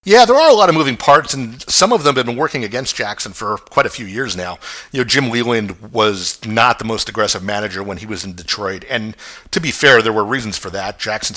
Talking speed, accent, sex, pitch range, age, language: 255 wpm, American, male, 100-120 Hz, 50-69, English